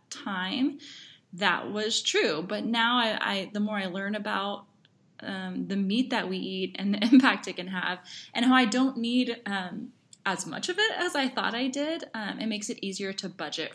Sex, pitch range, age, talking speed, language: female, 190-240 Hz, 20-39, 205 wpm, English